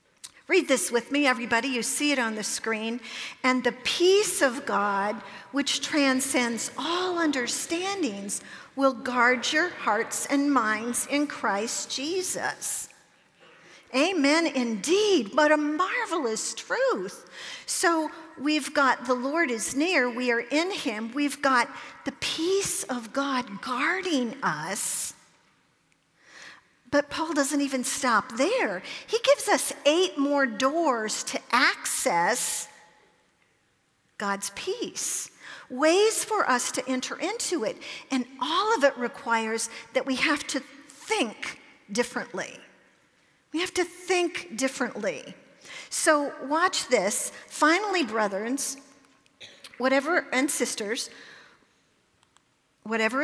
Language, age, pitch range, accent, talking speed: English, 50-69, 245-325 Hz, American, 115 wpm